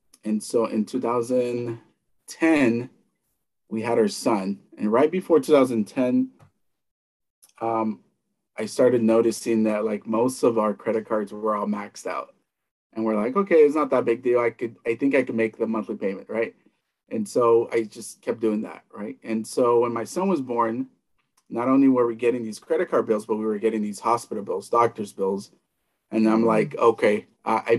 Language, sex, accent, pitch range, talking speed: English, male, American, 110-130 Hz, 185 wpm